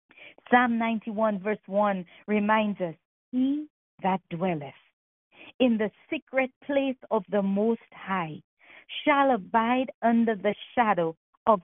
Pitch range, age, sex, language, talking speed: 205-255 Hz, 40-59, female, English, 120 wpm